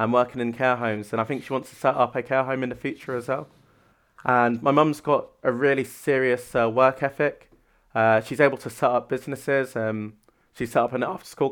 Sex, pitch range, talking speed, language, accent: male, 115-135 Hz, 235 wpm, English, British